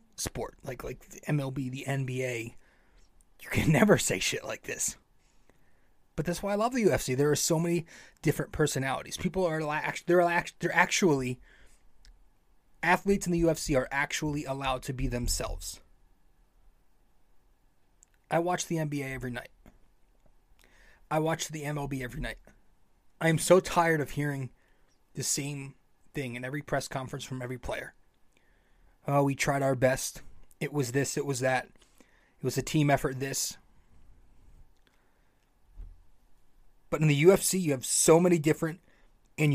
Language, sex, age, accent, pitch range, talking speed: English, male, 30-49, American, 130-155 Hz, 150 wpm